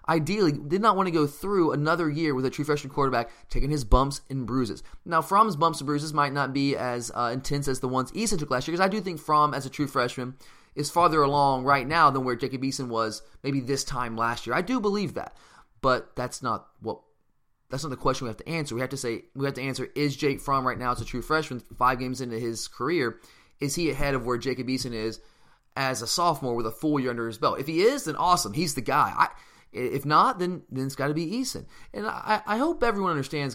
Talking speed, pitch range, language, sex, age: 250 wpm, 125-160 Hz, English, male, 20-39